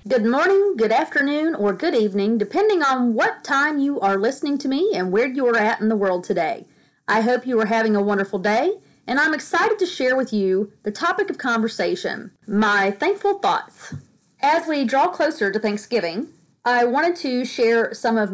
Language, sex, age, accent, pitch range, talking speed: English, female, 40-59, American, 185-240 Hz, 195 wpm